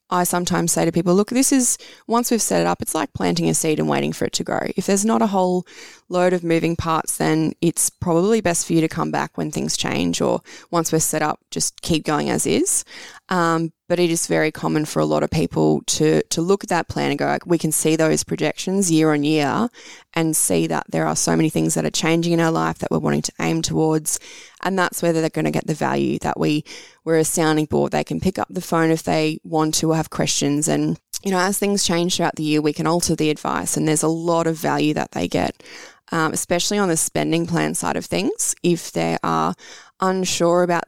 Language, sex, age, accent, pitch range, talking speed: English, female, 20-39, Australian, 145-175 Hz, 245 wpm